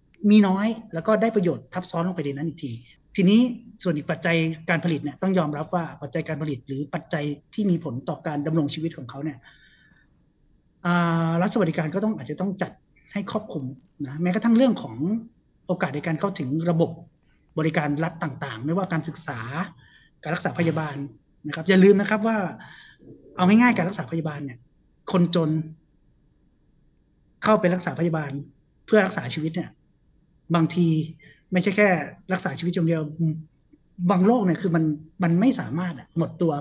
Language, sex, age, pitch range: Thai, male, 30-49, 150-185 Hz